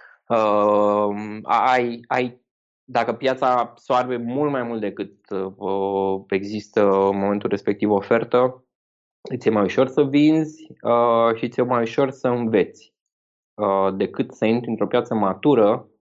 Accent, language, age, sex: native, Romanian, 20-39, male